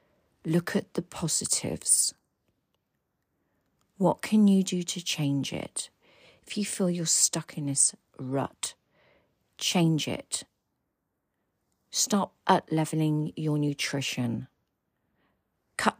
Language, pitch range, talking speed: English, 150-195 Hz, 100 wpm